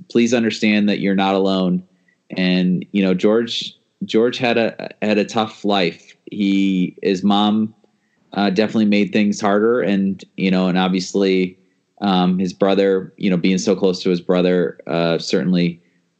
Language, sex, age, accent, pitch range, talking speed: English, male, 30-49, American, 90-105 Hz, 160 wpm